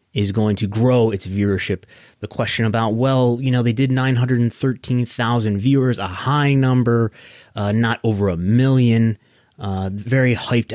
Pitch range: 105-125 Hz